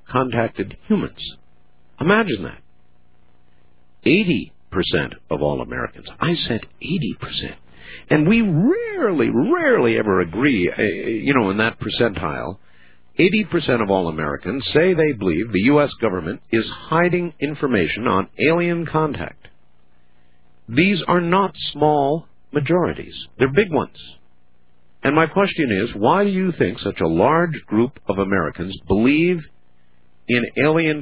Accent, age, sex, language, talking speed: American, 50-69, male, English, 125 wpm